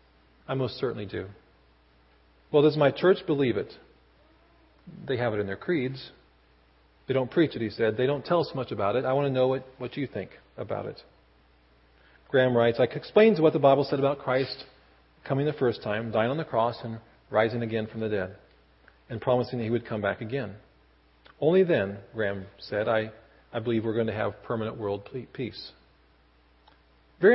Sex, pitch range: male, 95-140 Hz